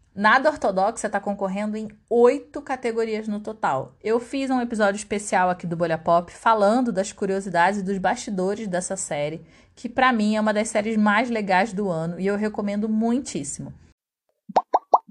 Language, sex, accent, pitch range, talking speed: Portuguese, female, Brazilian, 185-235 Hz, 165 wpm